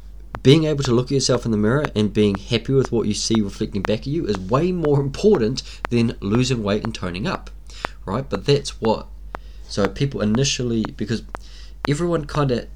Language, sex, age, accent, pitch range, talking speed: English, male, 20-39, Australian, 95-120 Hz, 195 wpm